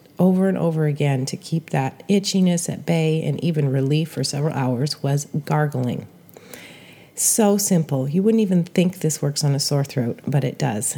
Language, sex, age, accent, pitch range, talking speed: English, female, 30-49, American, 145-185 Hz, 180 wpm